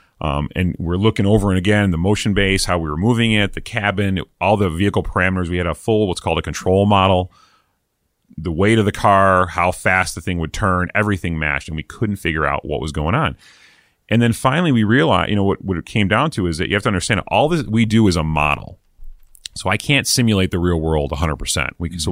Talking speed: 240 wpm